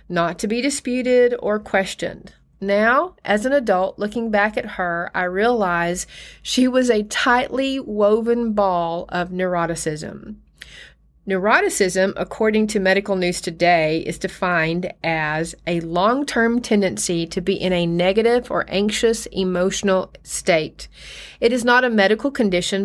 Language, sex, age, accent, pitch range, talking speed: English, female, 40-59, American, 190-235 Hz, 135 wpm